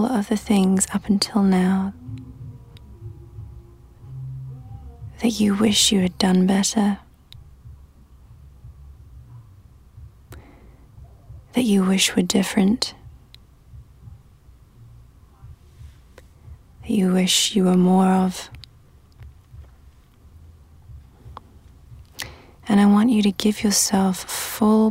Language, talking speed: English, 80 wpm